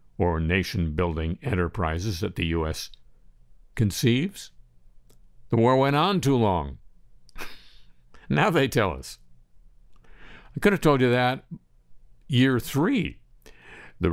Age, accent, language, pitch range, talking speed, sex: 60-79, American, English, 80-120 Hz, 110 wpm, male